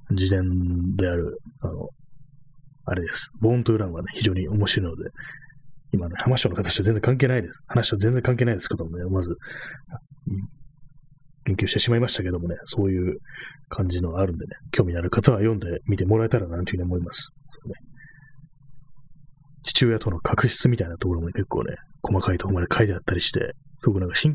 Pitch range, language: 95-140 Hz, Japanese